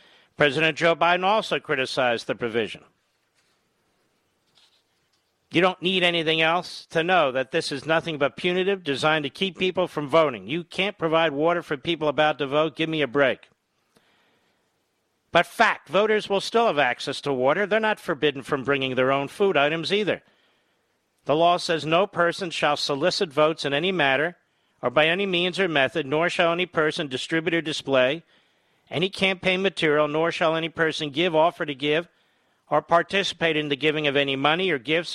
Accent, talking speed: American, 175 wpm